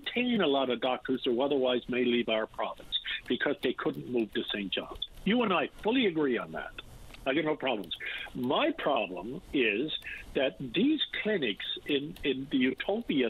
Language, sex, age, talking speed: English, male, 50-69, 170 wpm